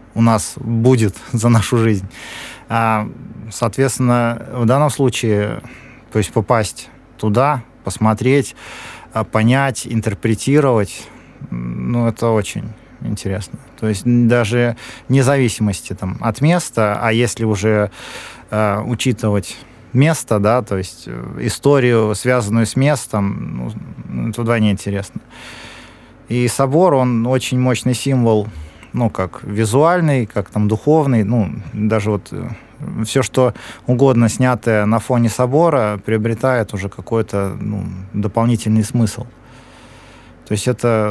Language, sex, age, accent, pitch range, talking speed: Russian, male, 20-39, native, 105-125 Hz, 110 wpm